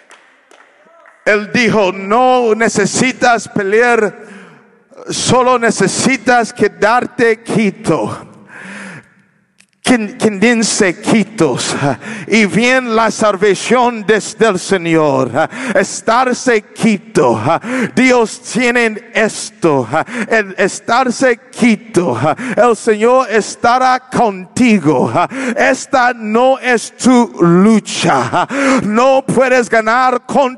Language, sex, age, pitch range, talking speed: English, male, 50-69, 220-285 Hz, 75 wpm